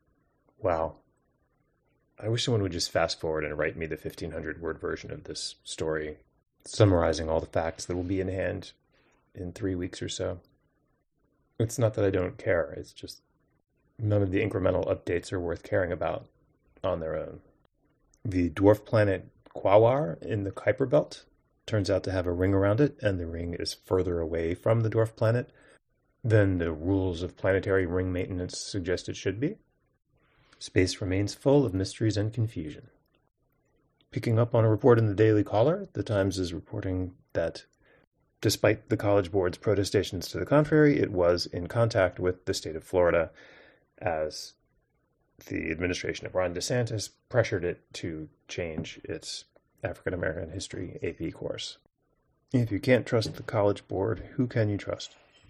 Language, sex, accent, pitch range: English, male, American, 90-110 Hz